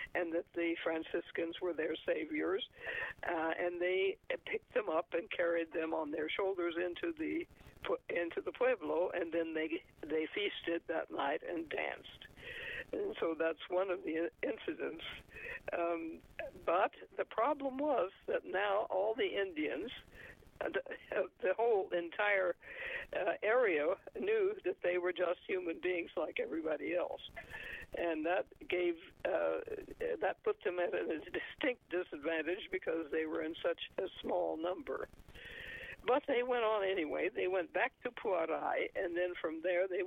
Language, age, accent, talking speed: English, 60-79, American, 150 wpm